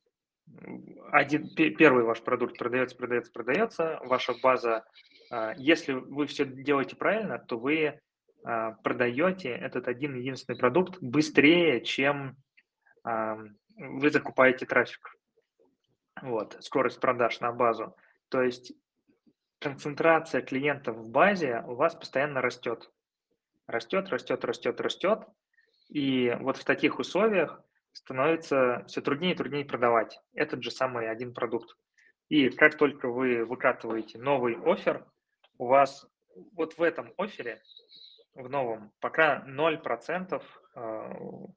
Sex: male